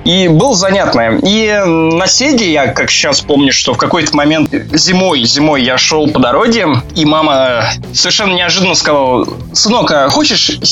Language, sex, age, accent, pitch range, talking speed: Russian, male, 20-39, native, 145-185 Hz, 150 wpm